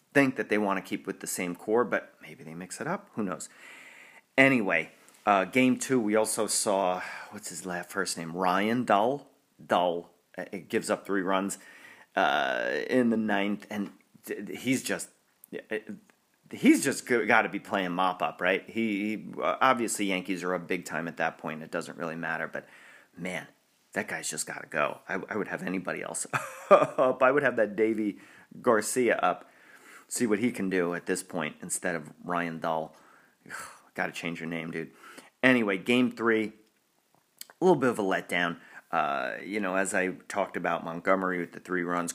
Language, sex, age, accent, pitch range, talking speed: English, male, 30-49, American, 85-110 Hz, 185 wpm